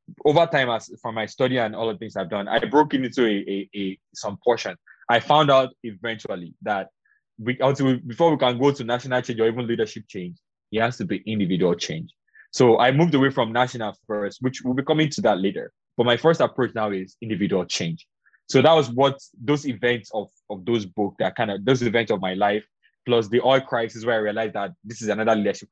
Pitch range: 110-135 Hz